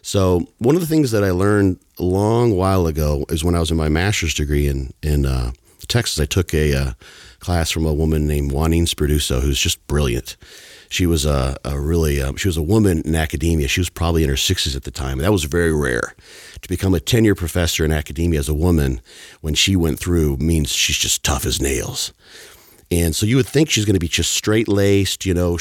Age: 40-59